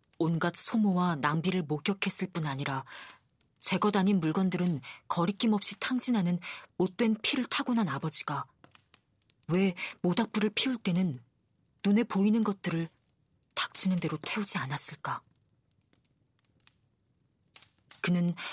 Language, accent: Korean, native